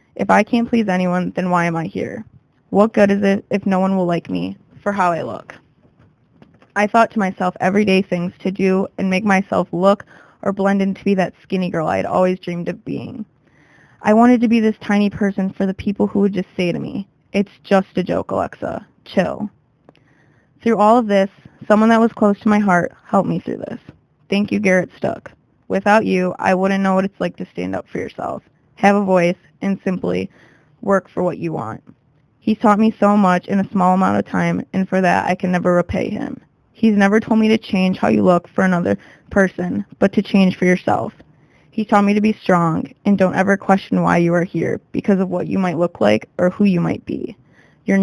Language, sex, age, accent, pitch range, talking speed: English, female, 20-39, American, 175-205 Hz, 220 wpm